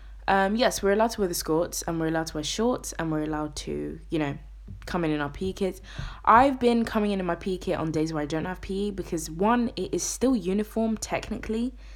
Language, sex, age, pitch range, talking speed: English, female, 20-39, 140-190 Hz, 240 wpm